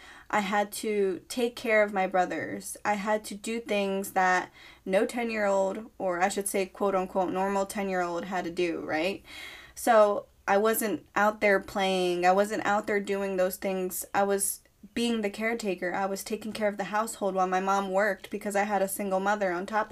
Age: 10-29